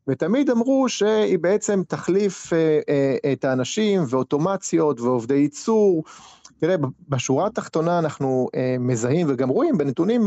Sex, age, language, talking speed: male, 30-49, Hebrew, 125 wpm